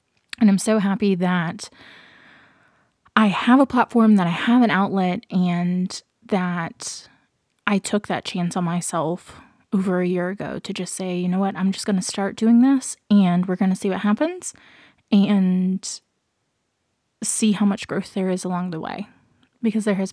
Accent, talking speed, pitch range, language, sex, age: American, 175 wpm, 185-215 Hz, English, female, 20-39